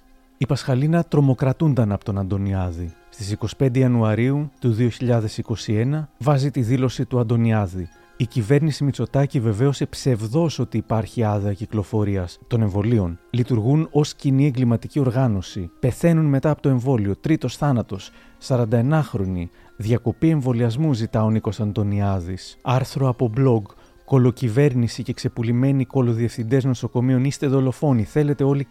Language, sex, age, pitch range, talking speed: Greek, male, 30-49, 110-140 Hz, 115 wpm